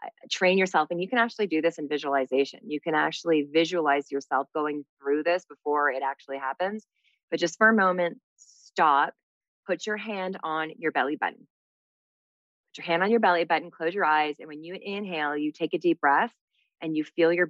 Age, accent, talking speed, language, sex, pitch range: 20-39, American, 200 wpm, English, female, 145-180 Hz